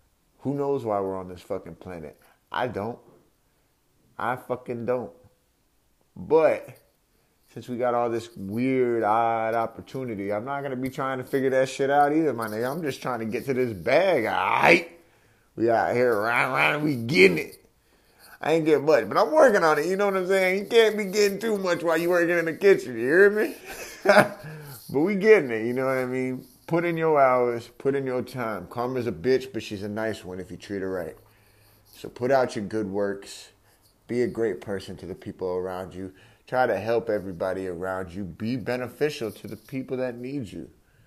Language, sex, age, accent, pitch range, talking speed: English, male, 30-49, American, 105-140 Hz, 205 wpm